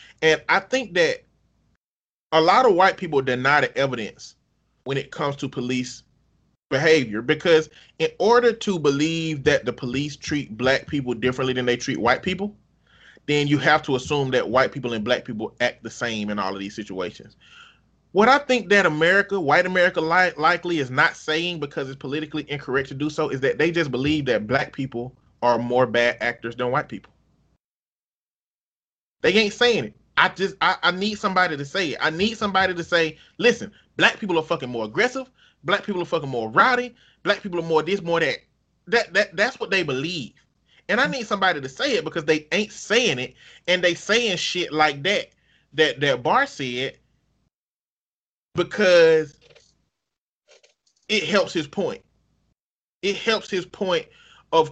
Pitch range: 135-195 Hz